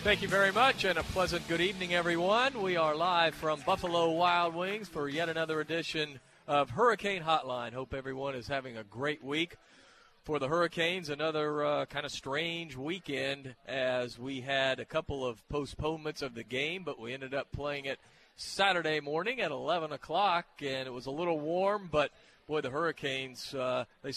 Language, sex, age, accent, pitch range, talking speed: English, male, 40-59, American, 130-165 Hz, 180 wpm